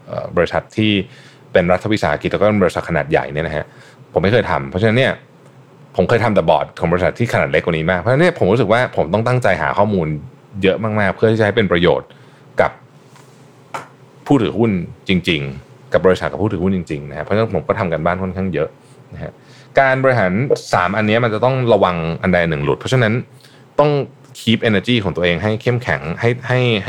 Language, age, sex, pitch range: Thai, 20-39, male, 90-130 Hz